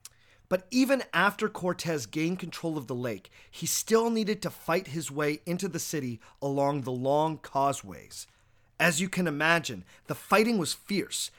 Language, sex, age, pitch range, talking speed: English, male, 30-49, 125-180 Hz, 165 wpm